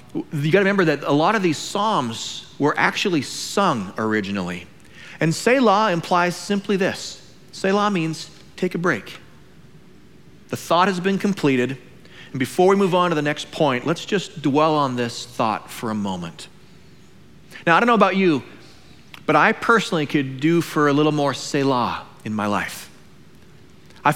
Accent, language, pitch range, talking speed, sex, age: American, English, 120-170 Hz, 165 wpm, male, 30-49